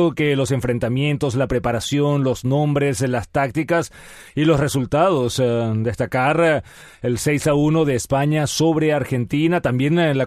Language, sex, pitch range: Spanish, male, 130-160 Hz